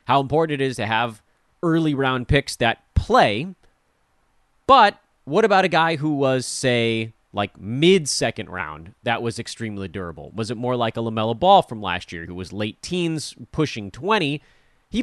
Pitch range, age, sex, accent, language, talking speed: 110-155 Hz, 30-49, male, American, English, 170 wpm